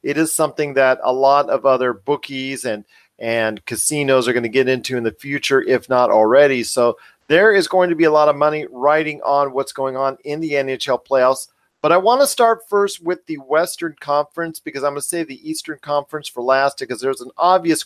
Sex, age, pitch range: male, 40-59, 145-190 Hz